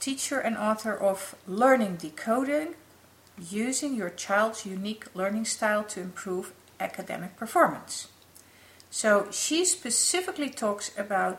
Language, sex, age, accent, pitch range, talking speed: English, female, 50-69, Dutch, 195-260 Hz, 110 wpm